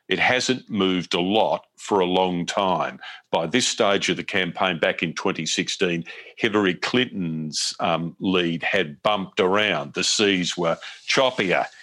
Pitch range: 90-105 Hz